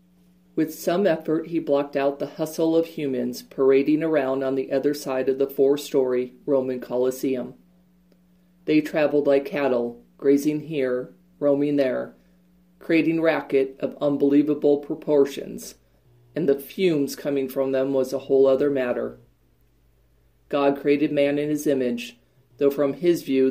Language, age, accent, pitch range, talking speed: English, 40-59, American, 125-150 Hz, 140 wpm